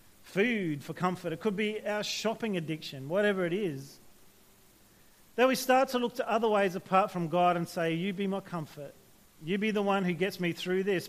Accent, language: Australian, English